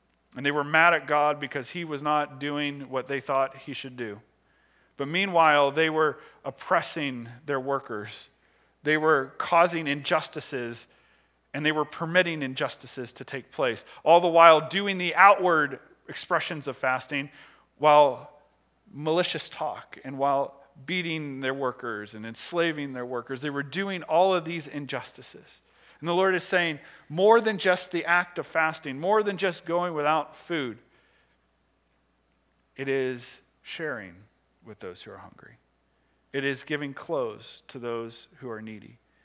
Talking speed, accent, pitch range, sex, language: 150 wpm, American, 125-160 Hz, male, English